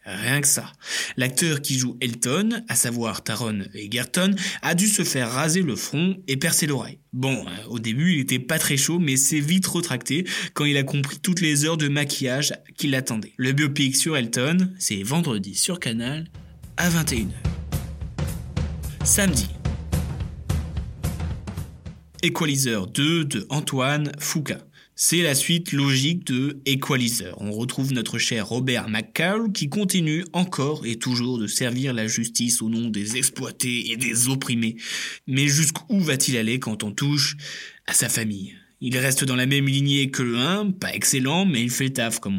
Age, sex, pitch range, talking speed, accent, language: 20-39, male, 120-160 Hz, 165 wpm, French, French